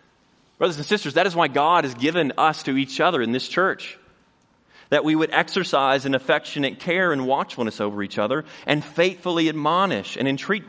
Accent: American